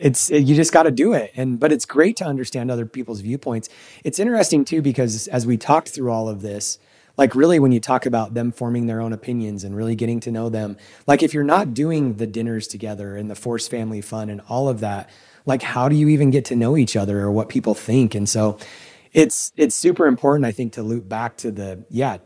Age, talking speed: 30-49, 240 wpm